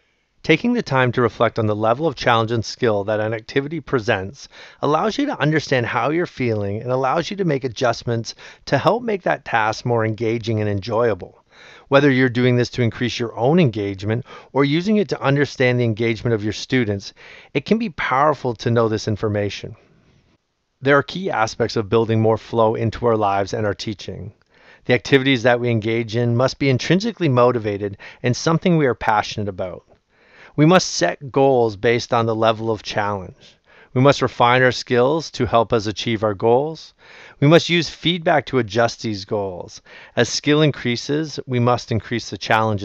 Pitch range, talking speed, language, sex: 110-140 Hz, 185 wpm, English, male